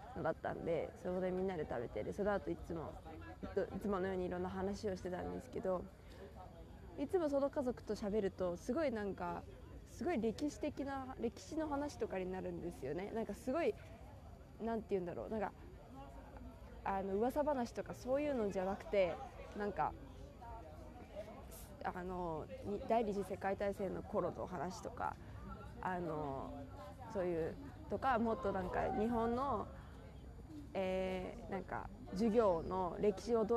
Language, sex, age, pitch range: Japanese, female, 20-39, 185-230 Hz